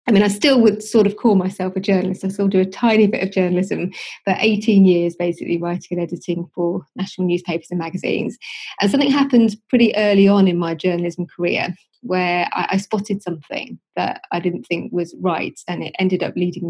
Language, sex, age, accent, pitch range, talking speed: English, female, 20-39, British, 175-205 Hz, 205 wpm